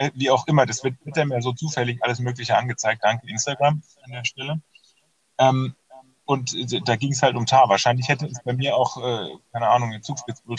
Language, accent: German, German